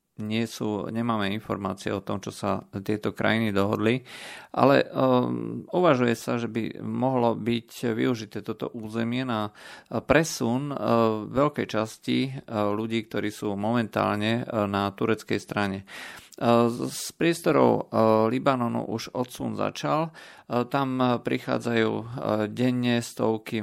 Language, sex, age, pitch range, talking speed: Slovak, male, 40-59, 105-120 Hz, 110 wpm